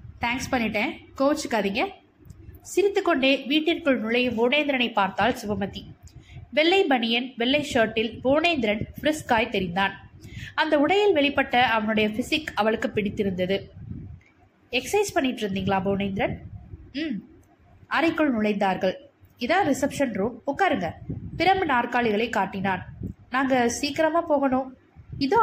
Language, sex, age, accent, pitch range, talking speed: Tamil, female, 20-39, native, 220-300 Hz, 95 wpm